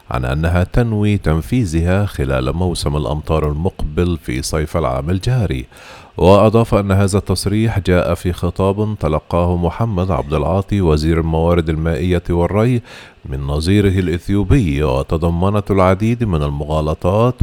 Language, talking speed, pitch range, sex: Arabic, 115 wpm, 80-105 Hz, male